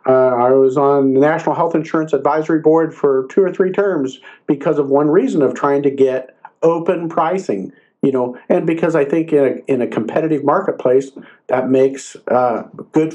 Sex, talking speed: male, 185 wpm